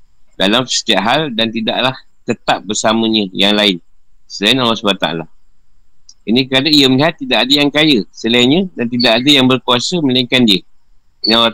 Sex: male